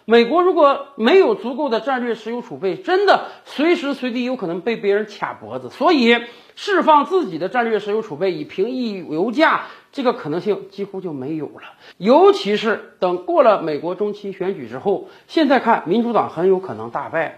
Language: Chinese